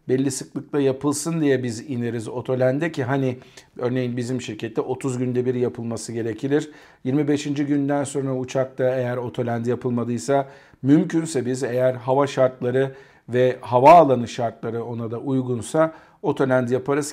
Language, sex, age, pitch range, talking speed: Turkish, male, 50-69, 125-150 Hz, 130 wpm